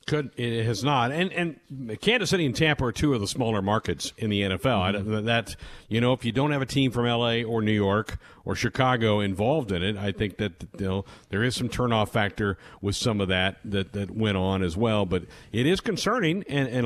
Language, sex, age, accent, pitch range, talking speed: English, male, 50-69, American, 105-145 Hz, 230 wpm